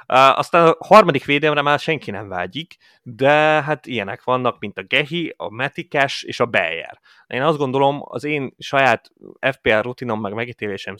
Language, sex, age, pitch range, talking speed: Hungarian, male, 30-49, 110-130 Hz, 165 wpm